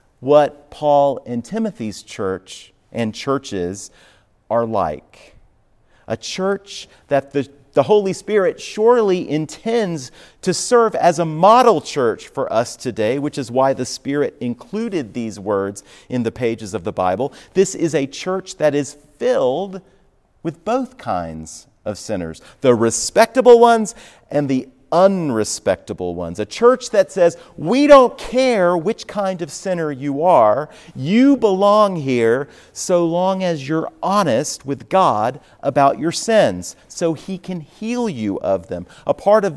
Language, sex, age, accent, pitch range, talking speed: English, male, 40-59, American, 115-190 Hz, 145 wpm